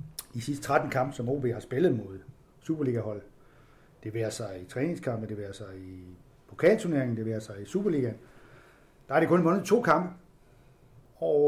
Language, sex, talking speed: Danish, male, 175 wpm